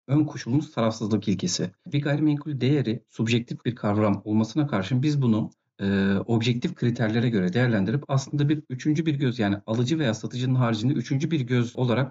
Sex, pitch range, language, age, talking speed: male, 120-165 Hz, Turkish, 50-69, 160 wpm